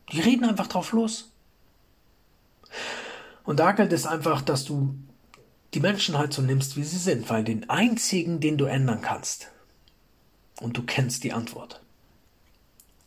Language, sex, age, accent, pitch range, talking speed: German, male, 40-59, German, 125-160 Hz, 145 wpm